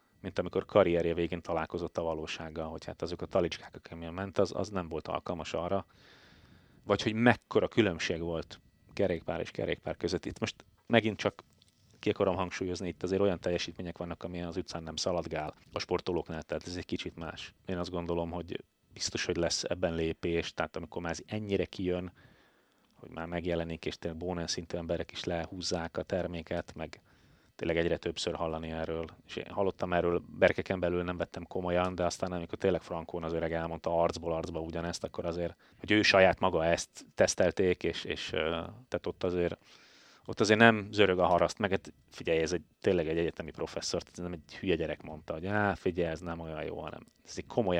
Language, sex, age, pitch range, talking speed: Hungarian, male, 30-49, 85-95 Hz, 185 wpm